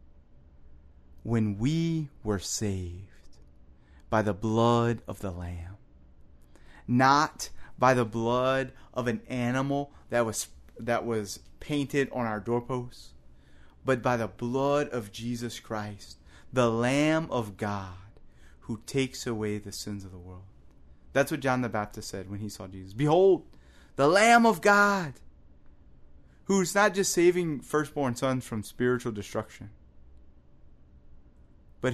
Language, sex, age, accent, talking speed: English, male, 30-49, American, 130 wpm